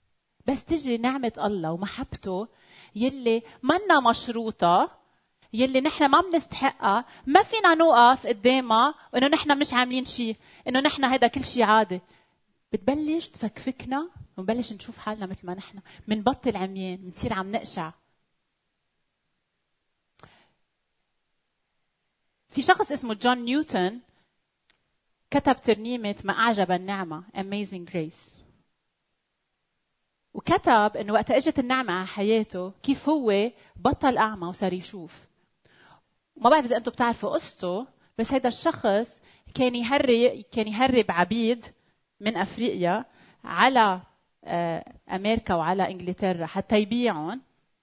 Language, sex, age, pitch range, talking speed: Arabic, female, 30-49, 195-260 Hz, 110 wpm